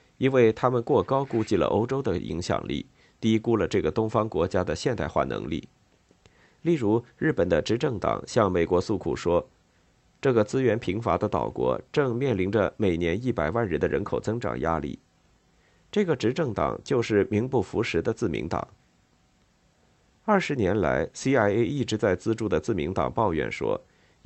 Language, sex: Chinese, male